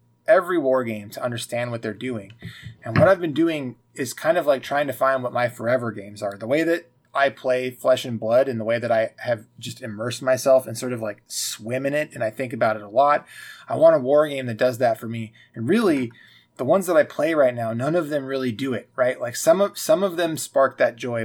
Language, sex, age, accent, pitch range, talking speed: English, male, 20-39, American, 115-140 Hz, 255 wpm